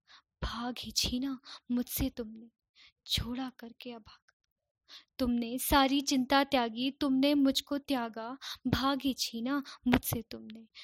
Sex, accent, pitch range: female, native, 235-275 Hz